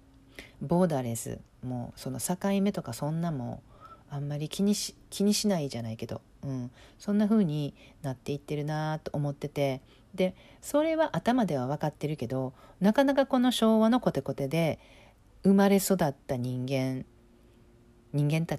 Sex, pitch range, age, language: female, 135-200 Hz, 40-59, Japanese